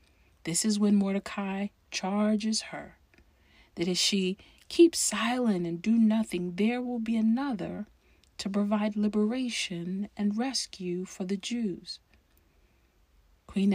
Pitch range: 170-220 Hz